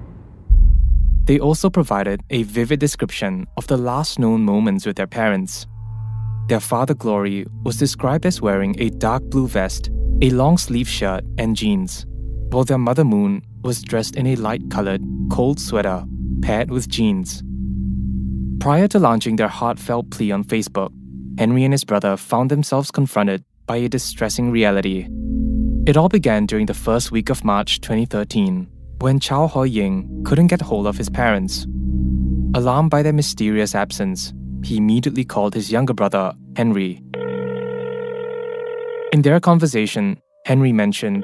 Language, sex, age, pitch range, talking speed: English, male, 20-39, 100-150 Hz, 145 wpm